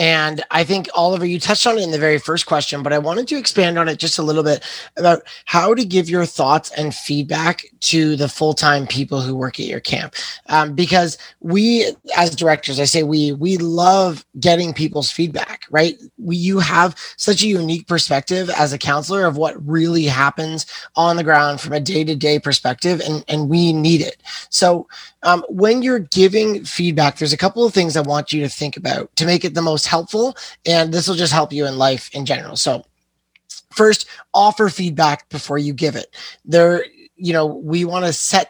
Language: English